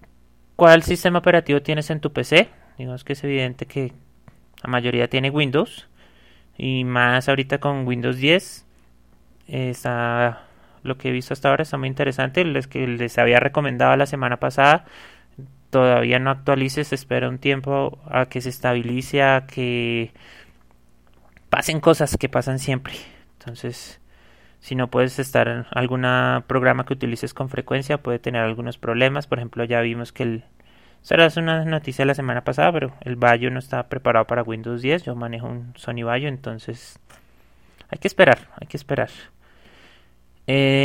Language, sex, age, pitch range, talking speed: Spanish, male, 30-49, 115-135 Hz, 160 wpm